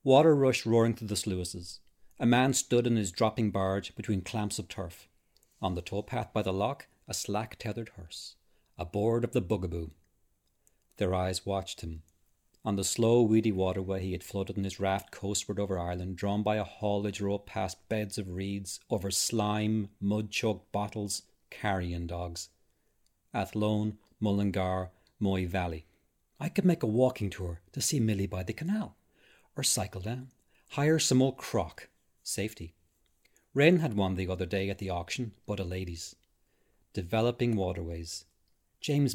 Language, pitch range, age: English, 90-110 Hz, 40-59